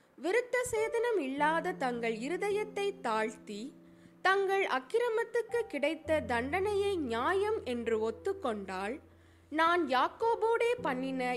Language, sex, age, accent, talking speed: Tamil, female, 20-39, native, 85 wpm